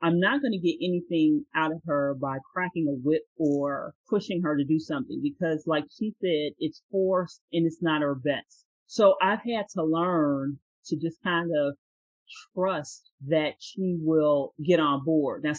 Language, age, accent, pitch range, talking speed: English, 40-59, American, 150-180 Hz, 180 wpm